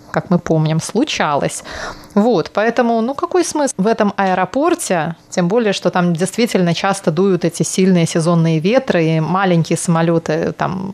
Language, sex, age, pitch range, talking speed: Russian, female, 20-39, 170-215 Hz, 150 wpm